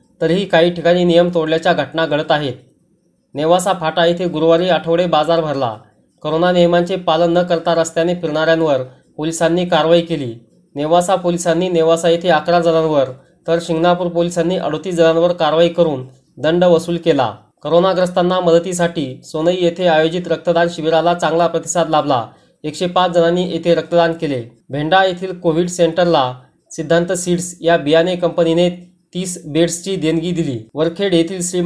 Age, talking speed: 30-49, 130 wpm